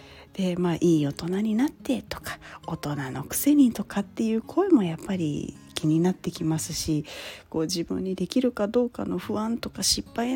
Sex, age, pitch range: female, 40-59, 180-265 Hz